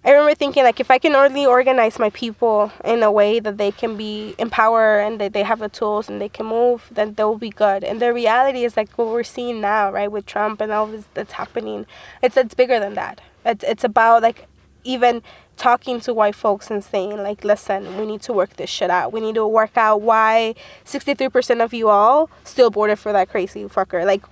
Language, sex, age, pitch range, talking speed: English, female, 20-39, 210-245 Hz, 225 wpm